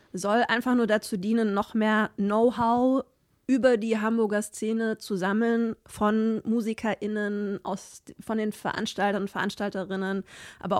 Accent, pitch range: German, 195-220 Hz